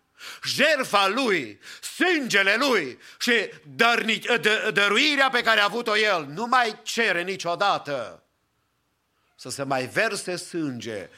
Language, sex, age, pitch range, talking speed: English, male, 50-69, 135-190 Hz, 120 wpm